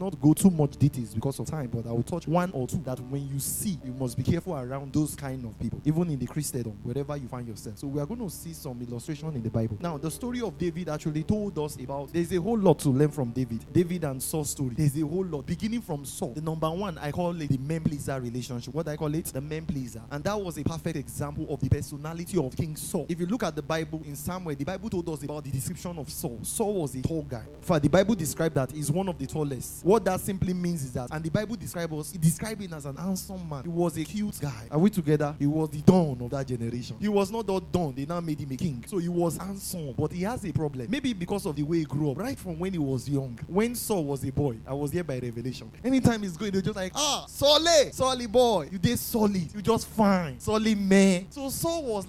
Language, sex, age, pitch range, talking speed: English, male, 20-39, 140-190 Hz, 265 wpm